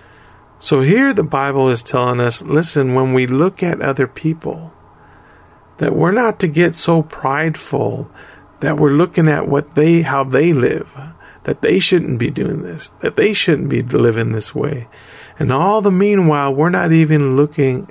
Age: 40-59